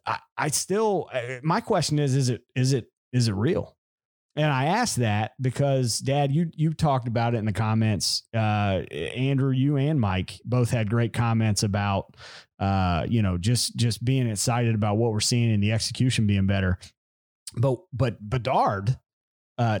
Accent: American